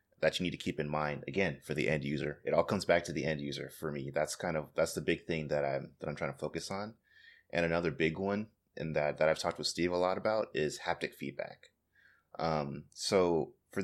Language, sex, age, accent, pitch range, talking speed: English, male, 30-49, American, 75-90 Hz, 245 wpm